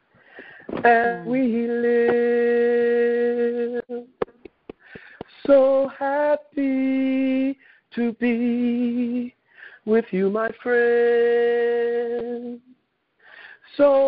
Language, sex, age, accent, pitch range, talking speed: English, male, 40-59, American, 240-265 Hz, 50 wpm